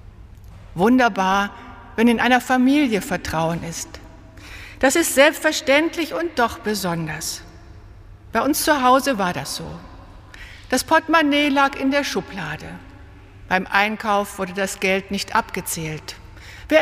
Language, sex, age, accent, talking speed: German, female, 60-79, German, 120 wpm